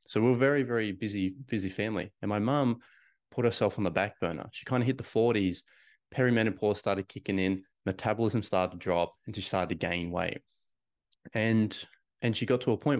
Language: English